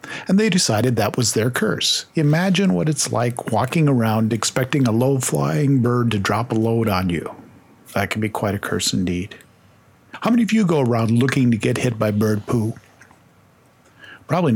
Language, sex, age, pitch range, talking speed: English, male, 50-69, 115-160 Hz, 180 wpm